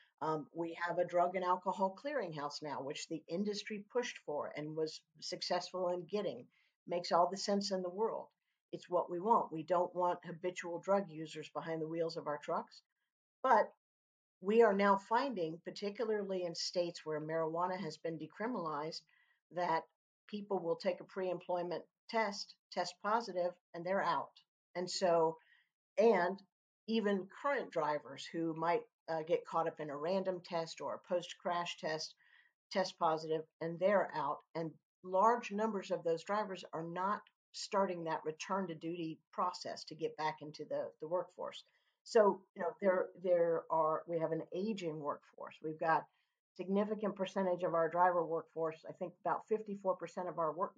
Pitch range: 160-195 Hz